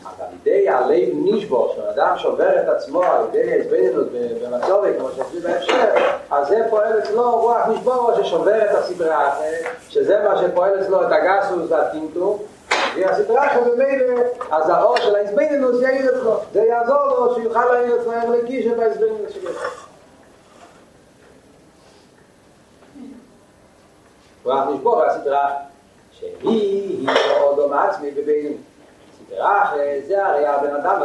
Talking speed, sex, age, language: 95 wpm, male, 40-59, Hebrew